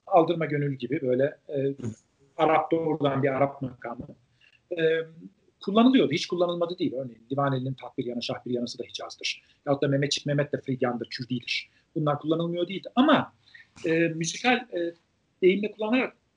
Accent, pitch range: native, 140-190 Hz